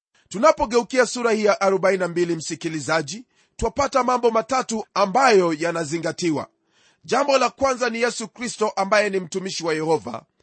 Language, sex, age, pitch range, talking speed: Swahili, male, 40-59, 185-250 Hz, 125 wpm